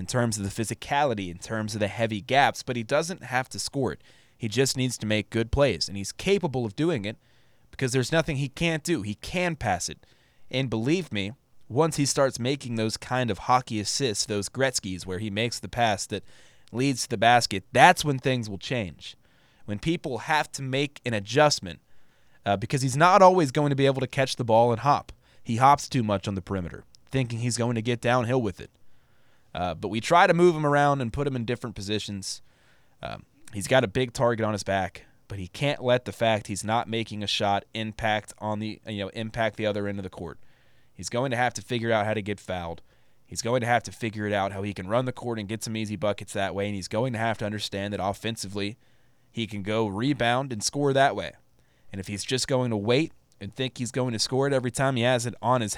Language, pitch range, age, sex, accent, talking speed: English, 105-130 Hz, 20-39, male, American, 240 wpm